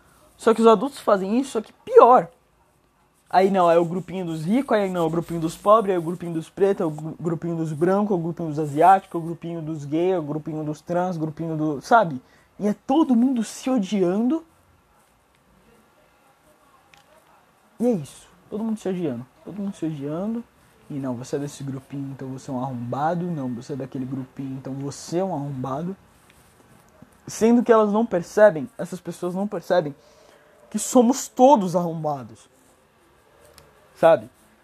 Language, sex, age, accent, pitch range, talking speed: Portuguese, male, 20-39, Brazilian, 160-225 Hz, 190 wpm